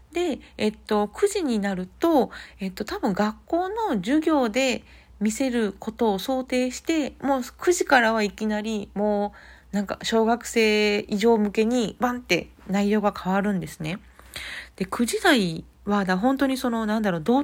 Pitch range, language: 175-245 Hz, Japanese